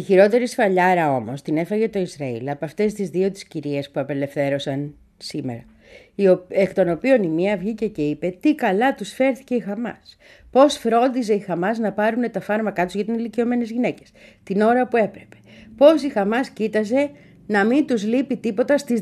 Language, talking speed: Greek, 185 wpm